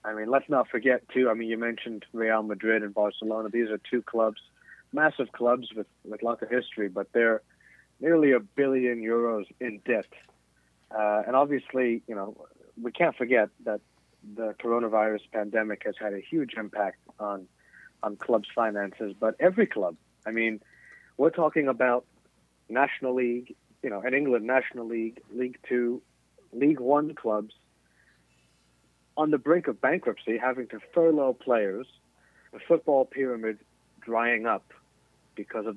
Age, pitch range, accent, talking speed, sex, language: 50-69, 105-130 Hz, American, 155 wpm, male, English